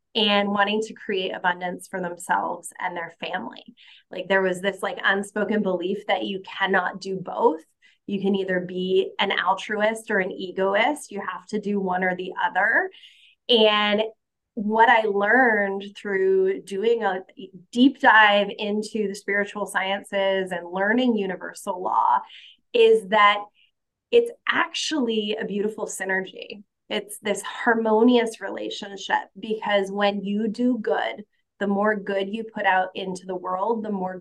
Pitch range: 190-225 Hz